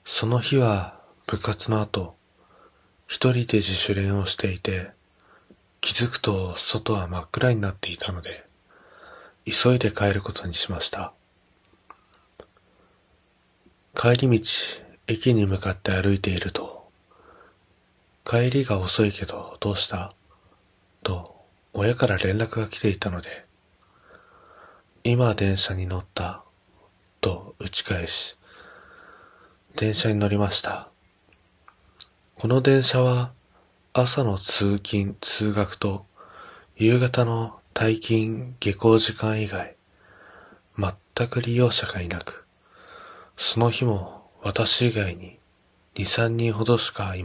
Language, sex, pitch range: Japanese, male, 95-115 Hz